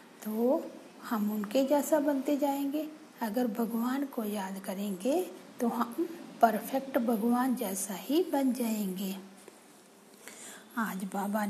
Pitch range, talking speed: 220-285 Hz, 110 wpm